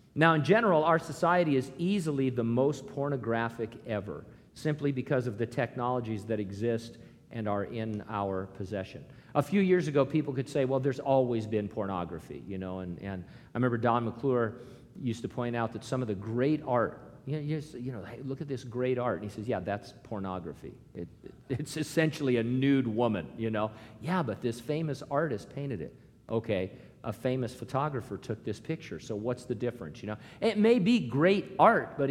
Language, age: English, 50-69